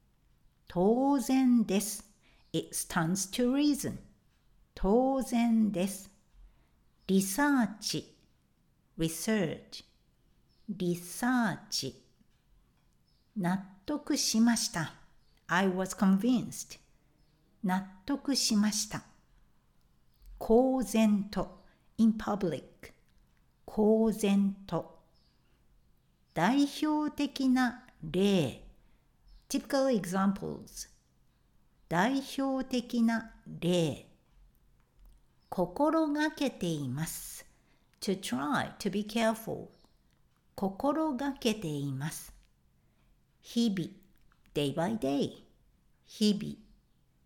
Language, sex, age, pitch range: Japanese, female, 60-79, 175-250 Hz